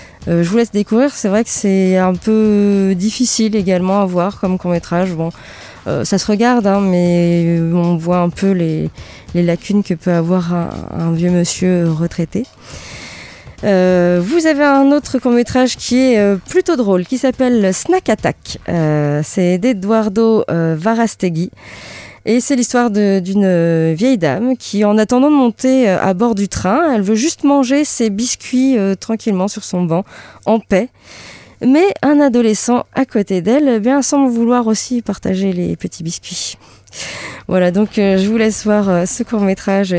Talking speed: 165 wpm